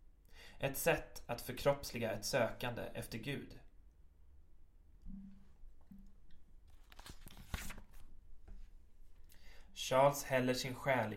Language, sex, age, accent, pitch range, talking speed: Swedish, male, 20-39, native, 100-130 Hz, 65 wpm